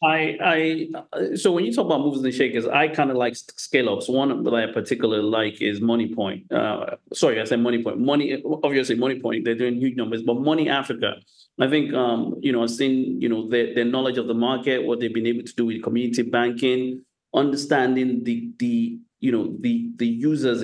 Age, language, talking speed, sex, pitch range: 30-49, English, 200 wpm, male, 115-130 Hz